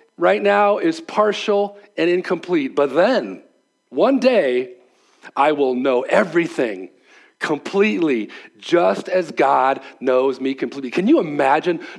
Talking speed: 120 wpm